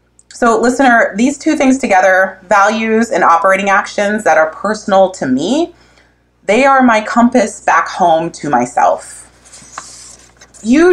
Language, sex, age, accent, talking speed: English, female, 20-39, American, 130 wpm